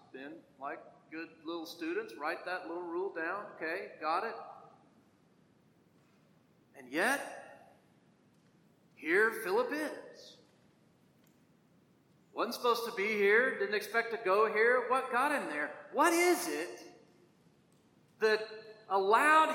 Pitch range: 200-280 Hz